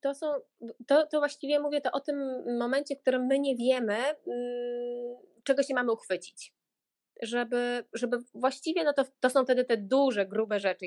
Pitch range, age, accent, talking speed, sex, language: 210-260 Hz, 20-39, native, 170 wpm, female, Polish